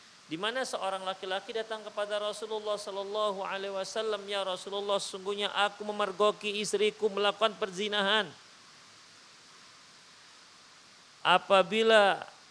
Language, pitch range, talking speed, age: Indonesian, 180-220 Hz, 90 wpm, 40-59